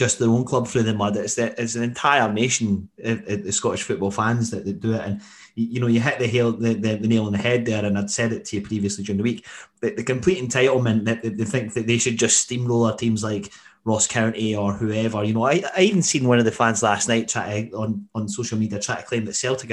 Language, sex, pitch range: English, male, 110-135 Hz